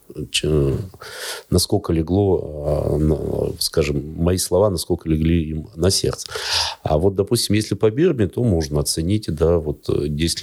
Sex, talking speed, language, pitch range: male, 125 wpm, Russian, 75-90 Hz